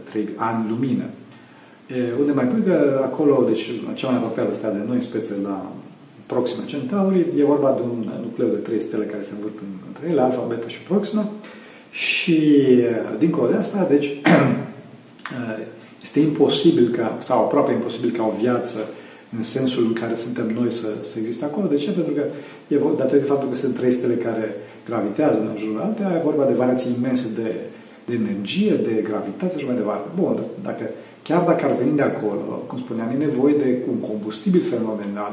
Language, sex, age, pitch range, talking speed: Romanian, male, 40-59, 110-150 Hz, 185 wpm